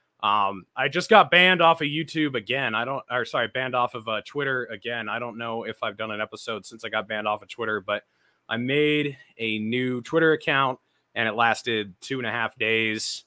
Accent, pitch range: American, 105-135 Hz